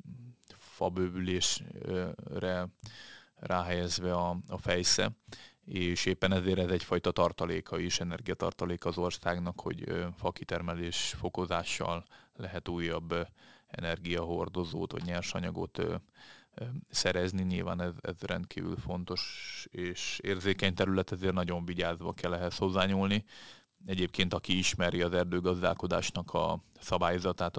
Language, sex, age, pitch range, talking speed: Hungarian, male, 30-49, 85-95 Hz, 95 wpm